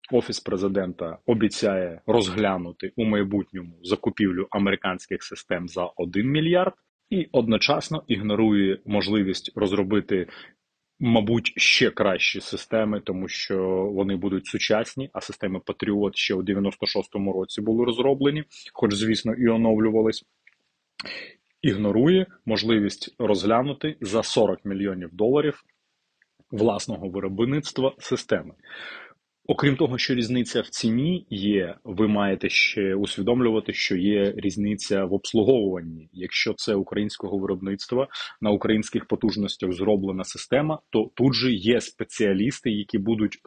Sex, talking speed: male, 110 wpm